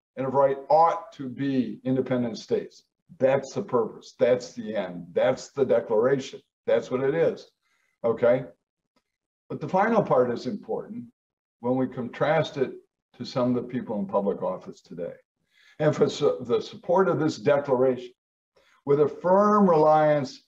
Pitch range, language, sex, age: 130-200 Hz, English, male, 60-79